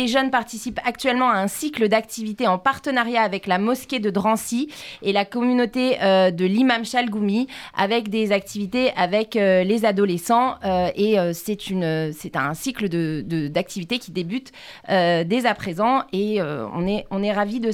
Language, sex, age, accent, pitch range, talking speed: French, female, 30-49, French, 185-240 Hz, 185 wpm